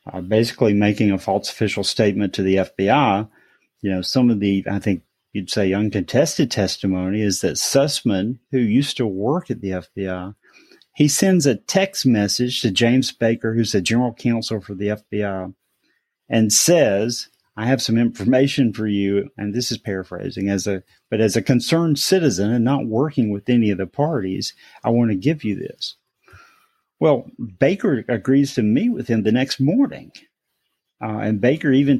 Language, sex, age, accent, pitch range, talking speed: English, male, 40-59, American, 100-135 Hz, 175 wpm